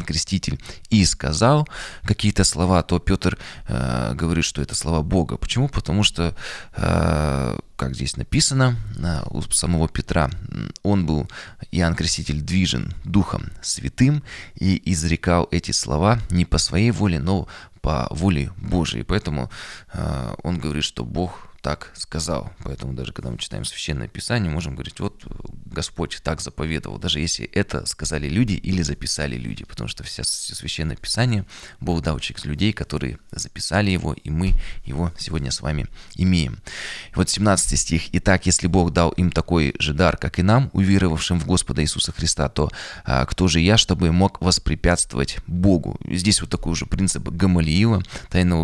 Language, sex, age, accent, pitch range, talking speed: Russian, male, 20-39, native, 80-95 Hz, 155 wpm